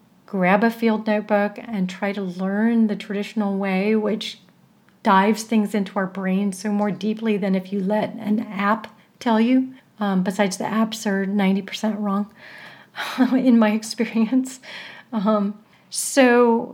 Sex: female